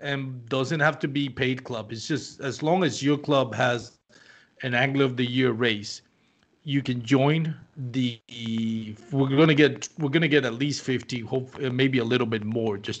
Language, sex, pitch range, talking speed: English, male, 115-140 Hz, 200 wpm